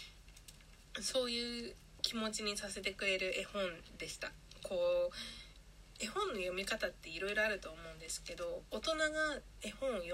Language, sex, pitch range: Japanese, female, 175-250 Hz